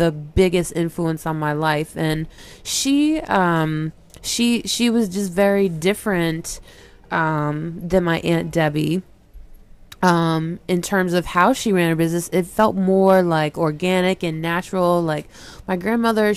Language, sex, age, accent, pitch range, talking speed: English, female, 20-39, American, 165-200 Hz, 145 wpm